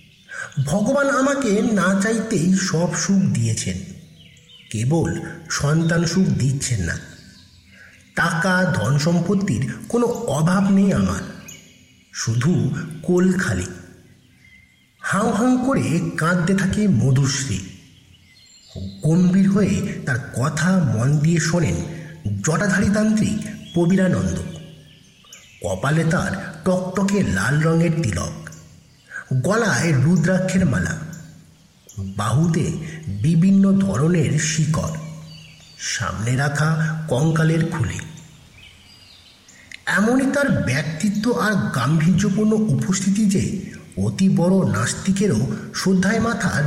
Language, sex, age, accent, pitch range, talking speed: Bengali, male, 50-69, native, 140-195 Hz, 75 wpm